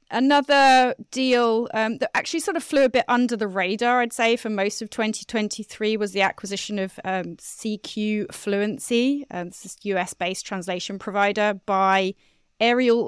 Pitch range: 190-235 Hz